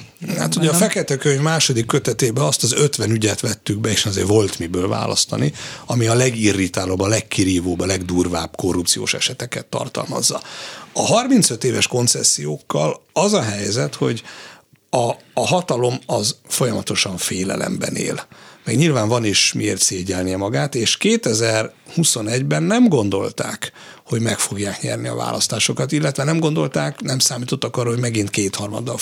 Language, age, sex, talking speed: Hungarian, 60-79, male, 145 wpm